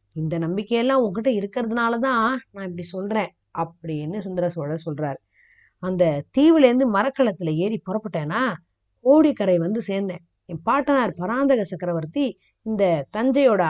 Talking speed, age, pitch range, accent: 115 wpm, 20-39, 170-235 Hz, native